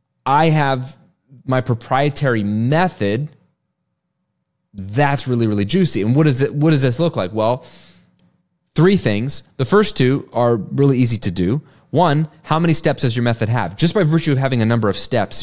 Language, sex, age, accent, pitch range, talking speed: English, male, 30-49, American, 110-150 Hz, 170 wpm